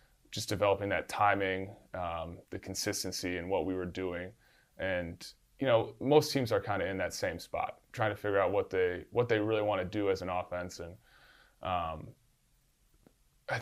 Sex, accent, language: male, American, English